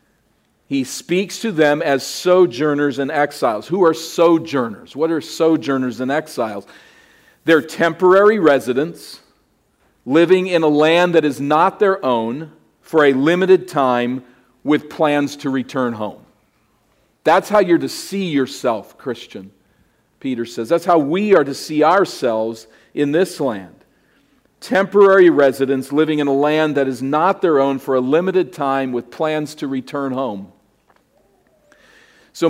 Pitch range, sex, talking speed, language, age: 130-170 Hz, male, 140 wpm, English, 50-69